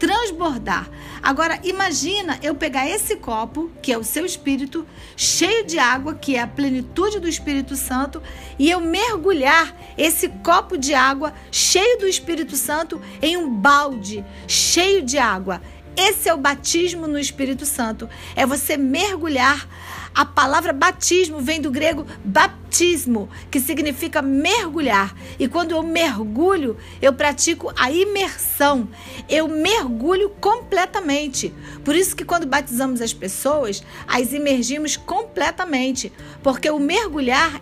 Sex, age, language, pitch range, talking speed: female, 40-59, Portuguese, 270-355 Hz, 130 wpm